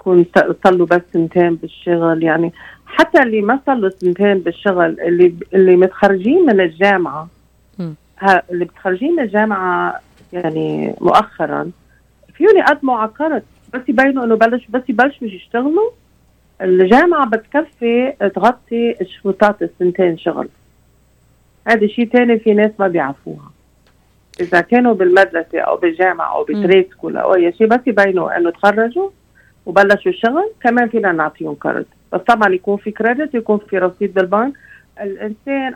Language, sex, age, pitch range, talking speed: Arabic, female, 40-59, 170-220 Hz, 130 wpm